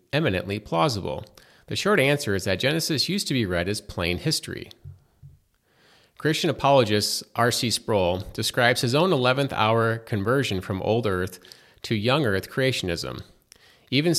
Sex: male